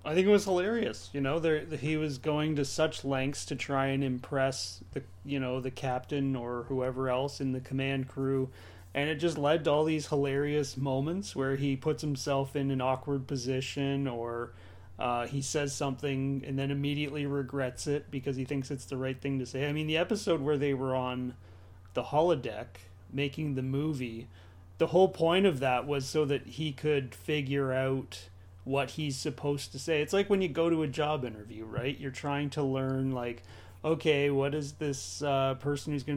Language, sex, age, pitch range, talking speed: English, male, 30-49, 125-145 Hz, 195 wpm